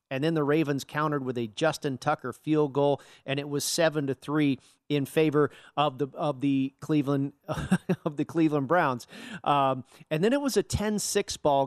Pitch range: 140-175 Hz